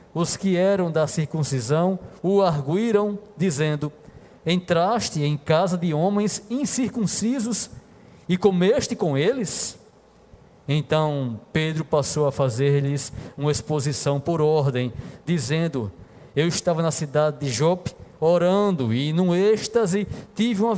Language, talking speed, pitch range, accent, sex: Portuguese, 115 wpm, 155-200 Hz, Brazilian, male